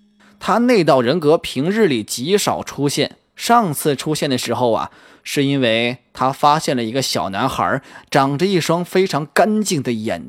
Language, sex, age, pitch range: Chinese, male, 20-39, 105-150 Hz